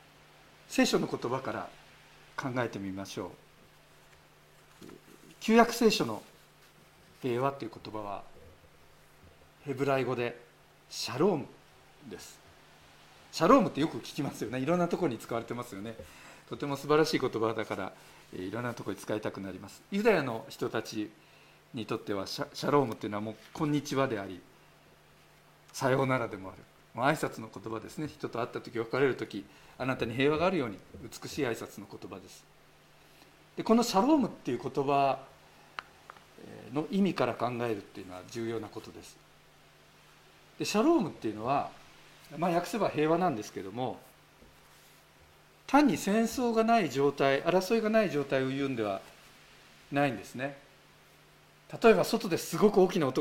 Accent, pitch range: native, 105-175 Hz